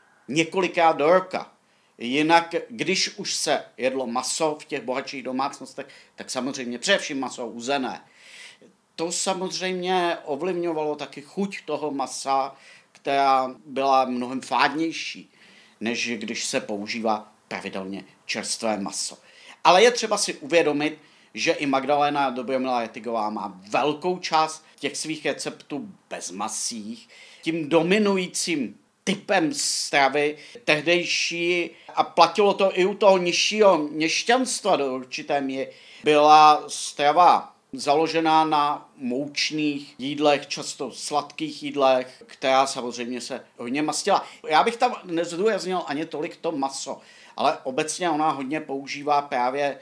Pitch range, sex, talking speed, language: 135-175 Hz, male, 120 wpm, Czech